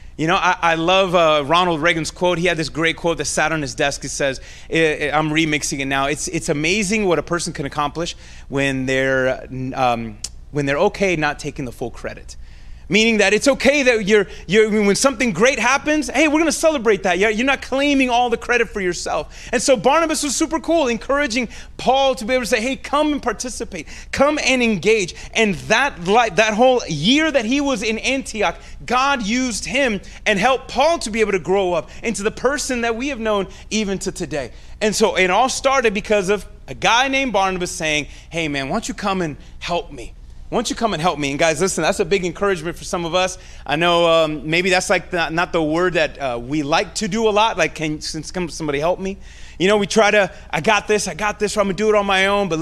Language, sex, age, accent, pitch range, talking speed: English, male, 30-49, American, 160-235 Hz, 235 wpm